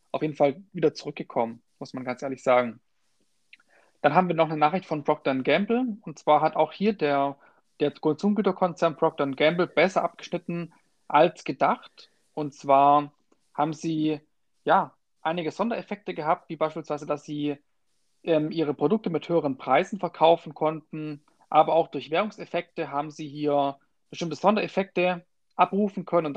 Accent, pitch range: German, 150-175 Hz